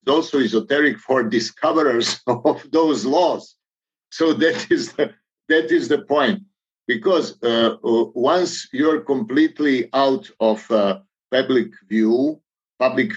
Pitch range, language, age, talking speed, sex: 110-145 Hz, English, 50-69, 115 wpm, male